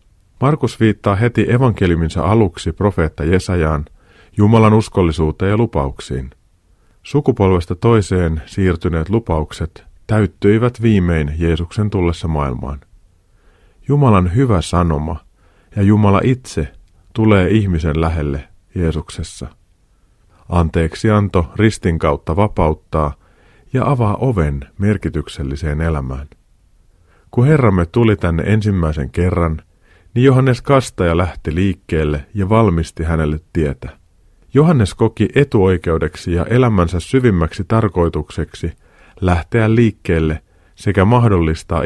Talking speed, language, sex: 95 wpm, Finnish, male